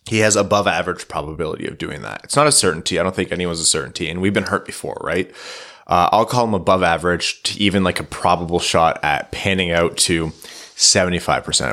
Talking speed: 210 wpm